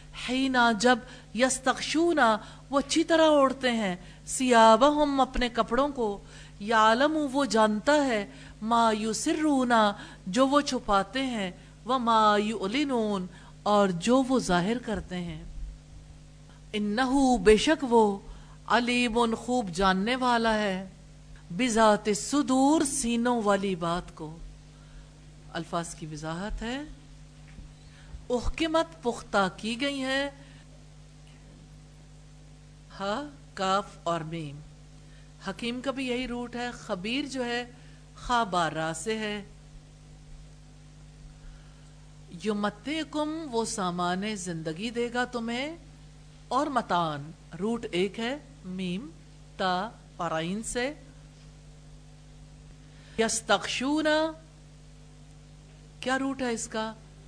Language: English